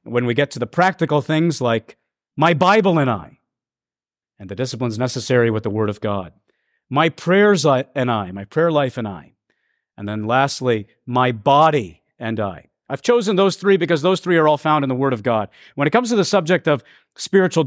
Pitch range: 125-165 Hz